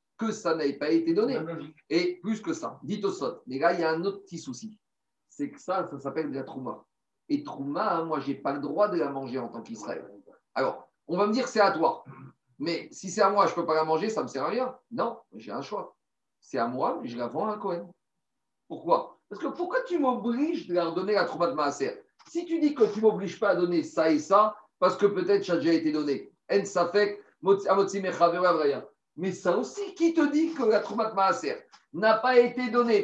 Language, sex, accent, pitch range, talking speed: French, male, French, 165-250 Hz, 235 wpm